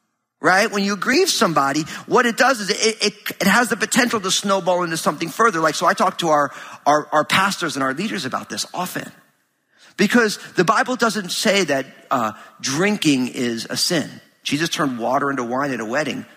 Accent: American